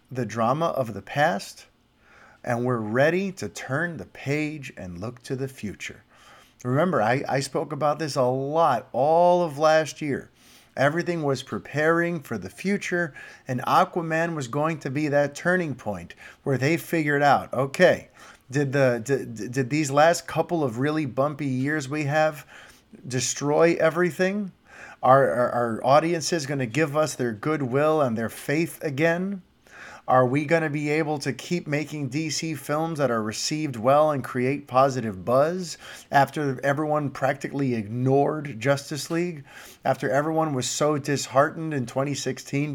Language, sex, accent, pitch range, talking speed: English, male, American, 130-160 Hz, 155 wpm